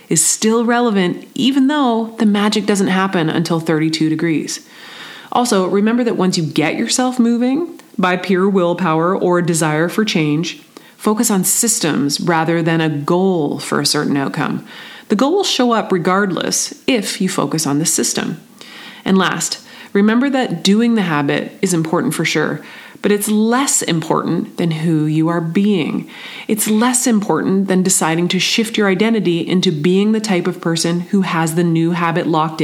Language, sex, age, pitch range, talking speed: English, female, 30-49, 165-225 Hz, 165 wpm